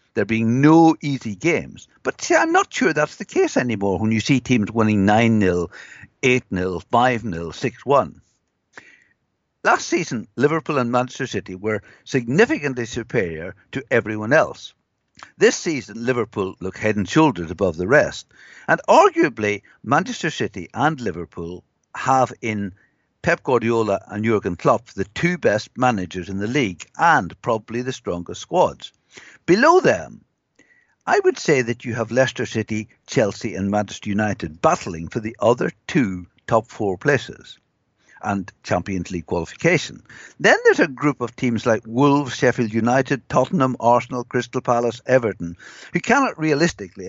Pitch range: 105-140 Hz